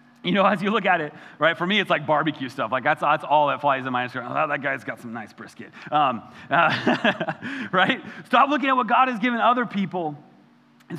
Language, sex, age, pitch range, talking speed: English, male, 30-49, 190-240 Hz, 235 wpm